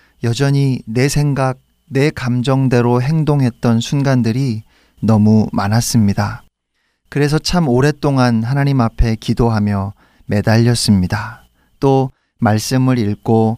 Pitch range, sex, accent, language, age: 110-145 Hz, male, native, Korean, 40-59